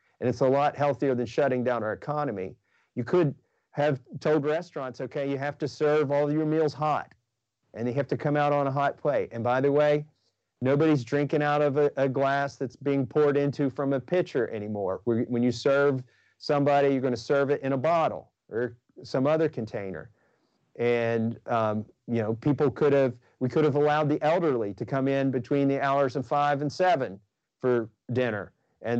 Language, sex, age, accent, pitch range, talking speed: English, male, 40-59, American, 125-150 Hz, 195 wpm